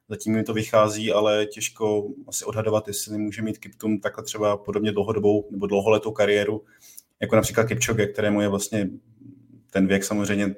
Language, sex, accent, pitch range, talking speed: Czech, male, native, 105-110 Hz, 160 wpm